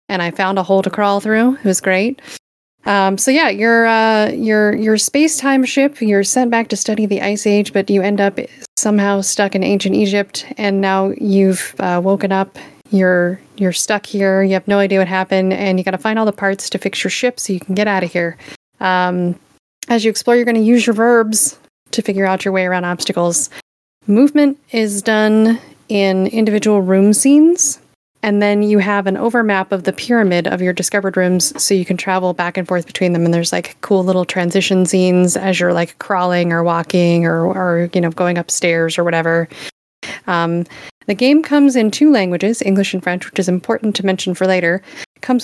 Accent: American